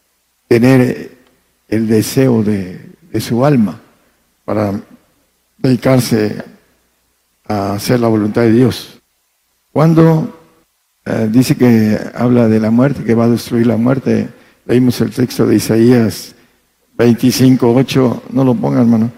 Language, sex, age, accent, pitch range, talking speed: Spanish, male, 60-79, Mexican, 110-130 Hz, 120 wpm